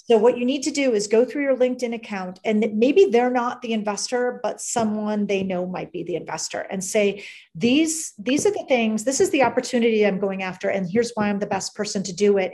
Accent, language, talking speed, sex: American, English, 240 wpm, female